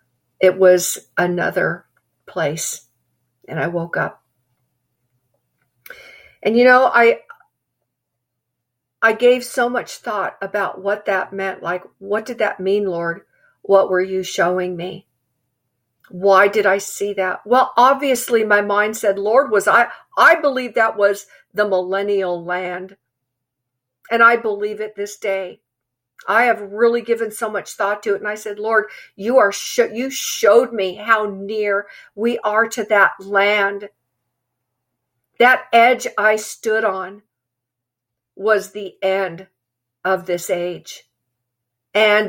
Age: 50-69